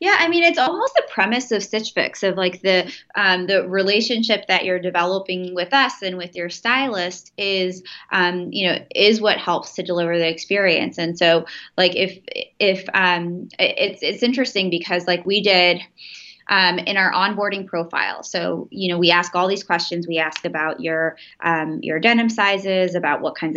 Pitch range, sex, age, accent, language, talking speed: 180-230 Hz, female, 20-39, American, English, 185 wpm